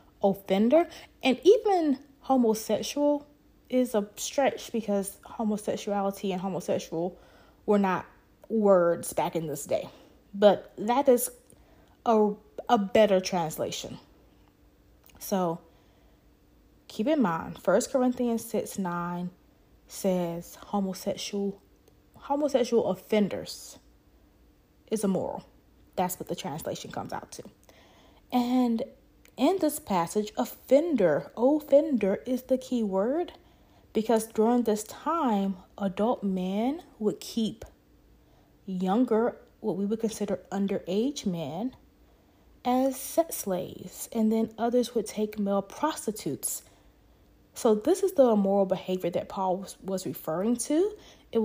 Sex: female